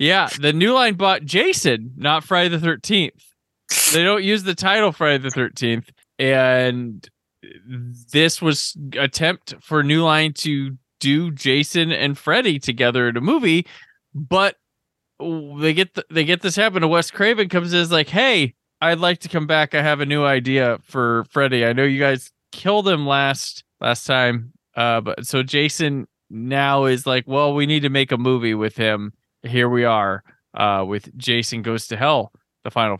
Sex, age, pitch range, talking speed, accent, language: male, 20-39, 115-150 Hz, 180 wpm, American, English